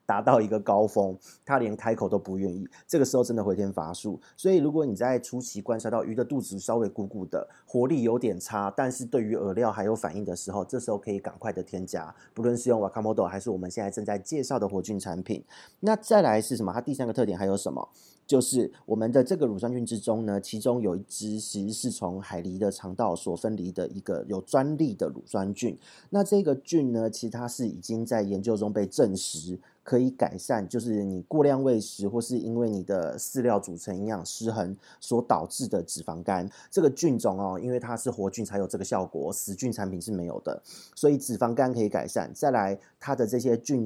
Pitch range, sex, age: 100-125 Hz, male, 30-49